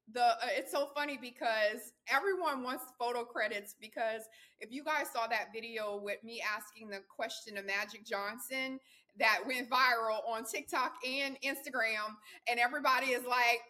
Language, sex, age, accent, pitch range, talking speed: English, female, 20-39, American, 230-295 Hz, 160 wpm